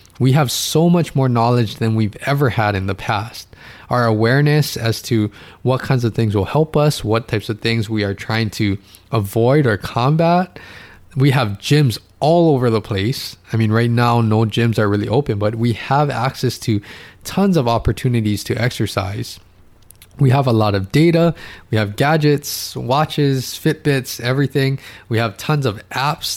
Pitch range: 105-145 Hz